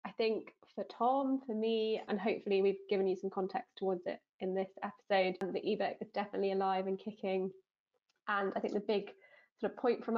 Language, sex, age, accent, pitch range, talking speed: English, female, 20-39, British, 195-240 Hz, 200 wpm